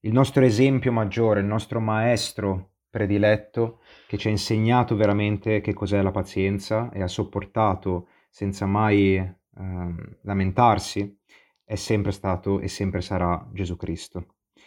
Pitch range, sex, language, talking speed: 95-110 Hz, male, Italian, 130 wpm